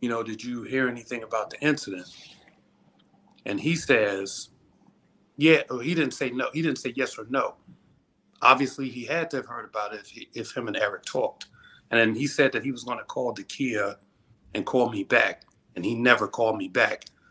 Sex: male